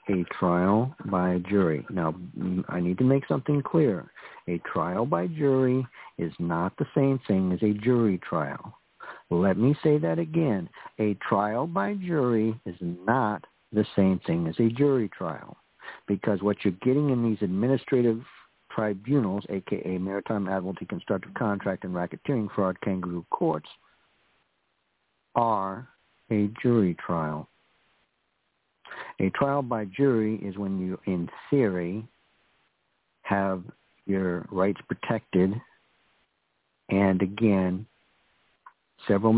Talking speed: 120 wpm